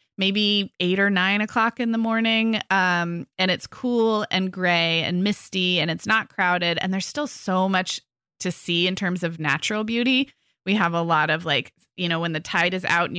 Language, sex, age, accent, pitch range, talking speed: English, female, 20-39, American, 170-215 Hz, 210 wpm